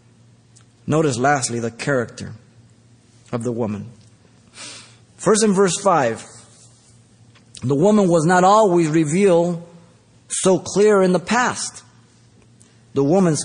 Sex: male